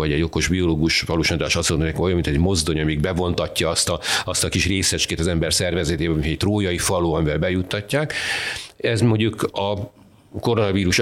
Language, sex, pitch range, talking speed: Hungarian, male, 90-120 Hz, 175 wpm